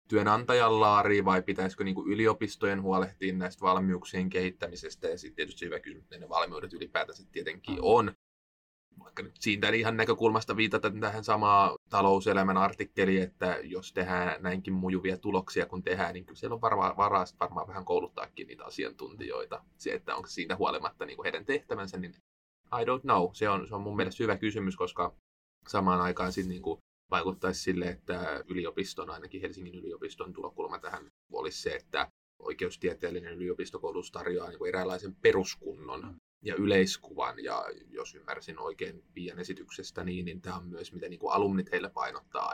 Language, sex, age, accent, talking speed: Finnish, male, 20-39, native, 155 wpm